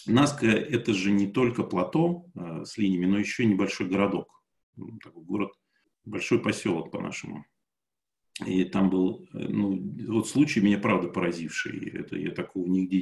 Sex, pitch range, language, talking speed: male, 95-120 Hz, Russian, 145 wpm